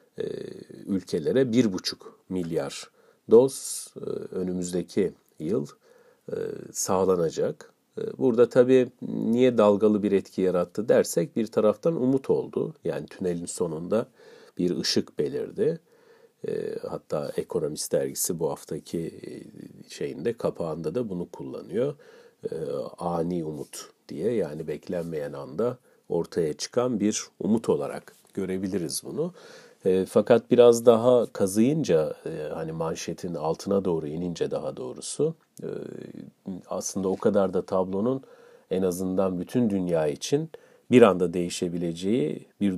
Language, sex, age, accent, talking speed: Turkish, male, 50-69, native, 105 wpm